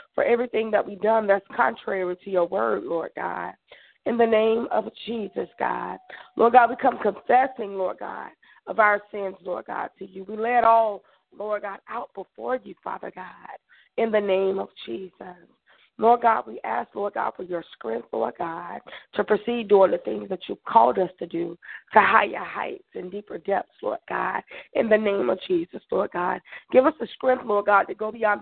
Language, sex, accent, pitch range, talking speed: English, female, American, 195-235 Hz, 195 wpm